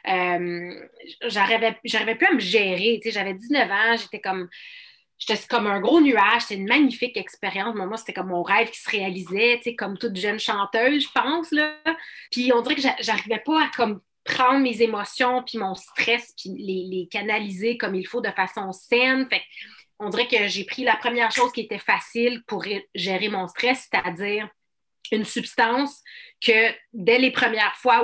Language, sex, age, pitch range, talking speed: French, female, 30-49, 200-245 Hz, 180 wpm